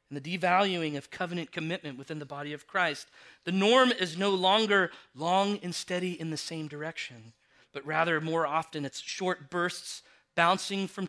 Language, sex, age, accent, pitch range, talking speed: English, male, 40-59, American, 145-200 Hz, 175 wpm